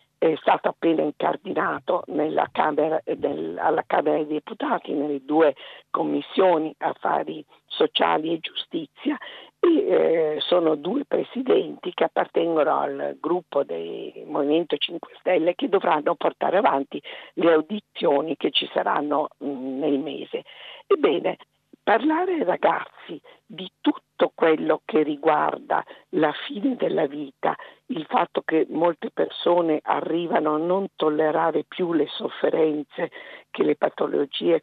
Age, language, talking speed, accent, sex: 50-69, Italian, 125 wpm, native, female